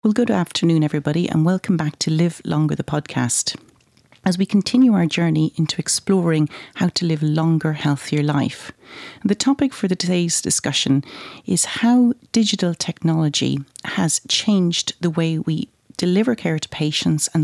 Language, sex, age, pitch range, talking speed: English, female, 40-59, 155-200 Hz, 150 wpm